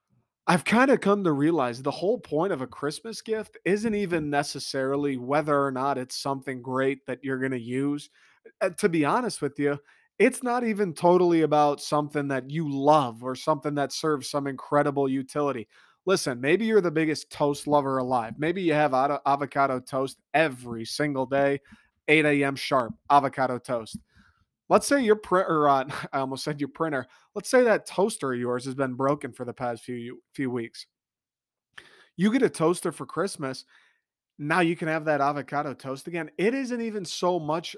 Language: English